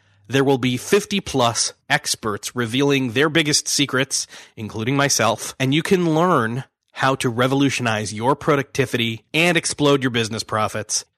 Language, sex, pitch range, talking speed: English, male, 120-160 Hz, 140 wpm